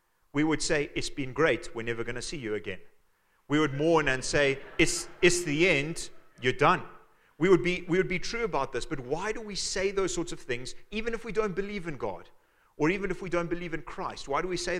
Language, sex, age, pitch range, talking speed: English, male, 40-59, 120-170 Hz, 245 wpm